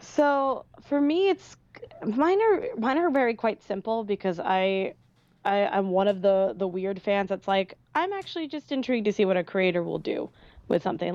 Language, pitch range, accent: English, 180-215 Hz, American